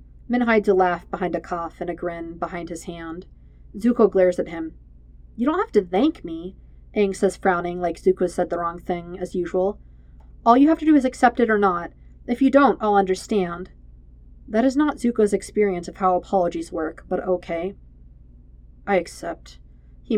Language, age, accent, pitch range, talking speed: English, 40-59, American, 170-215 Hz, 185 wpm